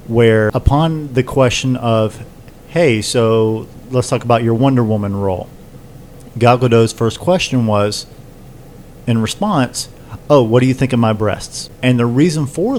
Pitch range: 110-130 Hz